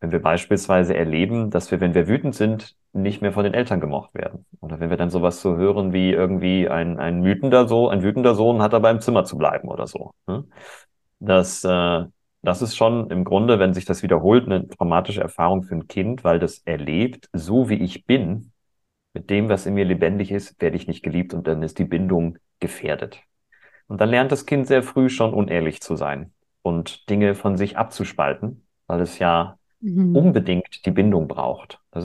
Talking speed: 195 wpm